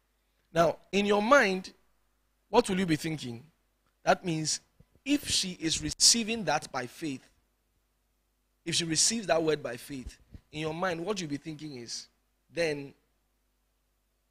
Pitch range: 115-175 Hz